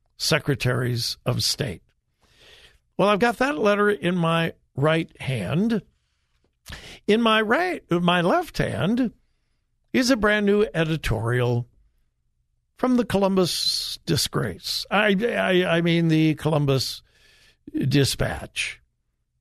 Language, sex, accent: English, male, American